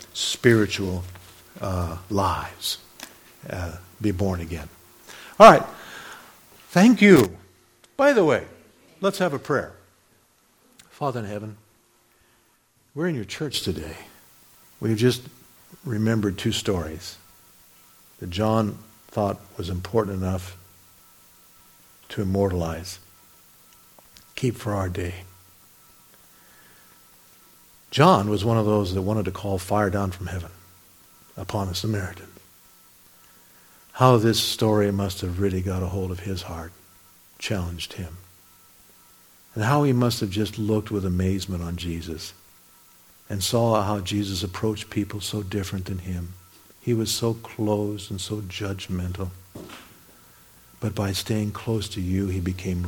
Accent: American